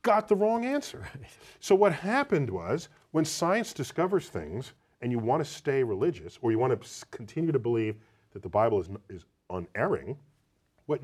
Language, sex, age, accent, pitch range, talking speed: English, male, 40-59, American, 110-155 Hz, 170 wpm